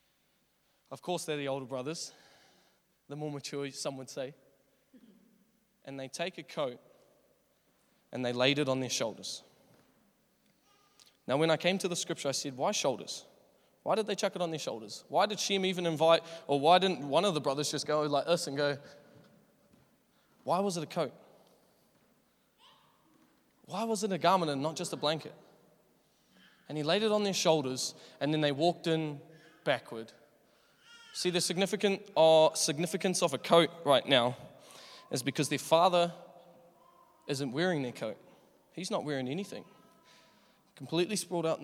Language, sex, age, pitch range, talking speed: English, male, 20-39, 140-175 Hz, 165 wpm